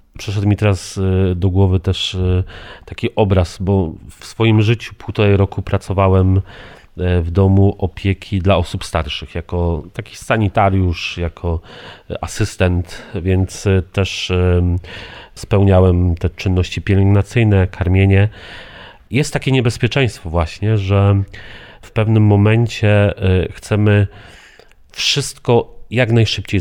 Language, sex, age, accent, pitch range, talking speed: Polish, male, 40-59, native, 90-105 Hz, 100 wpm